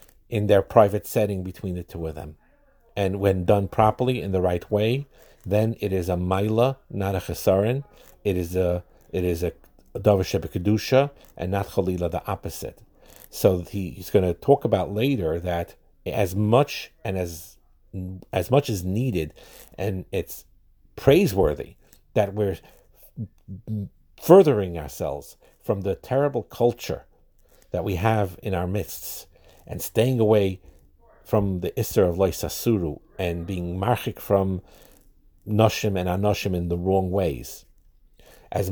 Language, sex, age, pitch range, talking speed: English, male, 50-69, 90-110 Hz, 140 wpm